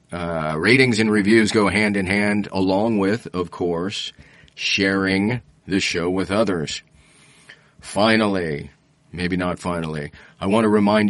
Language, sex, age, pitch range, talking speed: English, male, 40-59, 90-105 Hz, 130 wpm